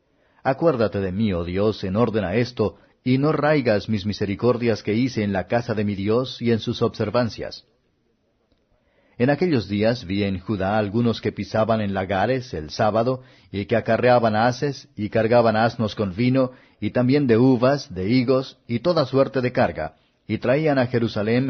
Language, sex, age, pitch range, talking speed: Spanish, male, 40-59, 105-125 Hz, 175 wpm